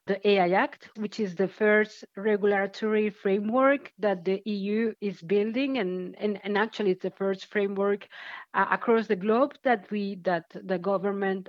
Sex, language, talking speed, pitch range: female, English, 160 wpm, 195-225 Hz